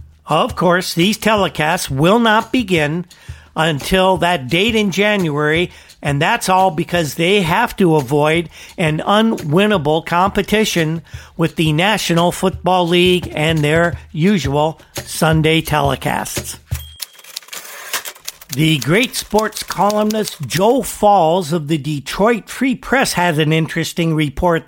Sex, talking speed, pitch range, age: male, 115 wpm, 160-210 Hz, 50-69